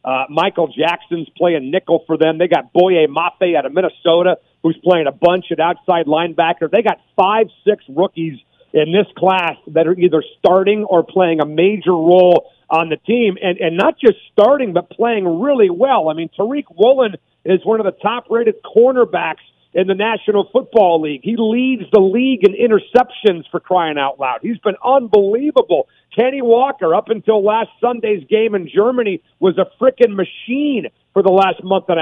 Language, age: English, 50-69